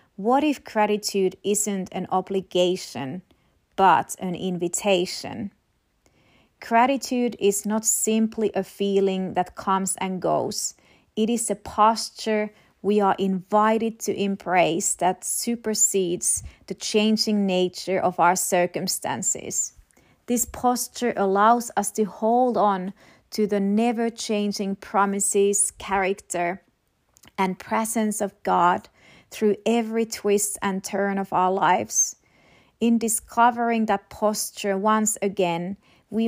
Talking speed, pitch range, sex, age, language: 110 wpm, 190-220 Hz, female, 30-49, English